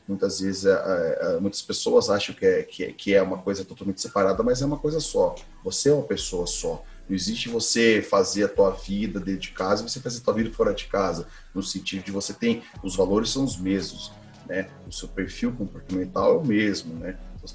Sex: male